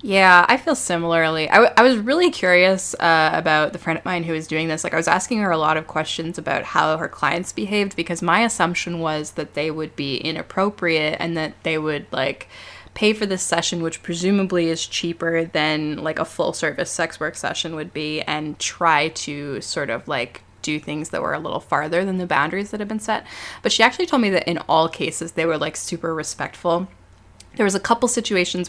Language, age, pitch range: English, 20-39, 160-190 Hz